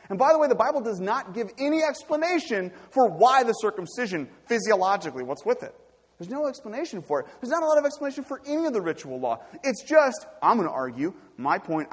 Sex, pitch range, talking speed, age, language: male, 170-255 Hz, 220 wpm, 30-49, English